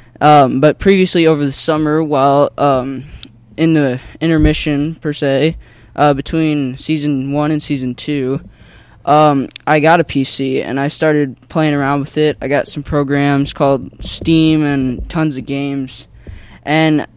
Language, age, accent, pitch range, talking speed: English, 10-29, American, 135-155 Hz, 145 wpm